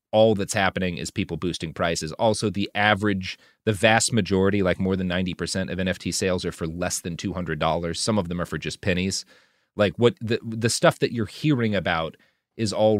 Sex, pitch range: male, 95-115 Hz